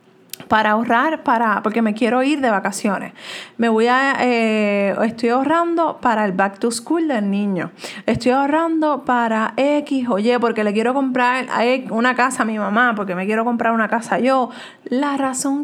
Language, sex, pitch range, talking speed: Spanish, female, 210-270 Hz, 180 wpm